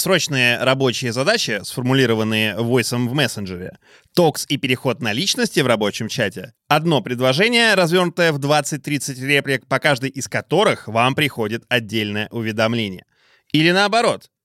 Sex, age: male, 20-39